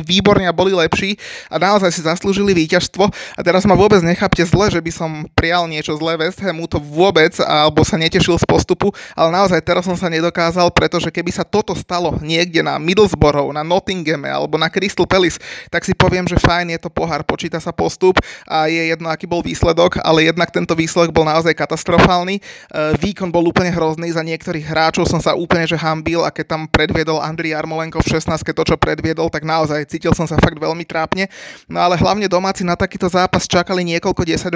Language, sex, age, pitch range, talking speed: Slovak, male, 20-39, 160-180 Hz, 200 wpm